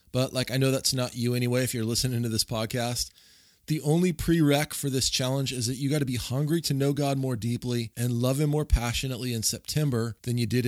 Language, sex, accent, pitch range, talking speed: English, male, American, 120-145 Hz, 235 wpm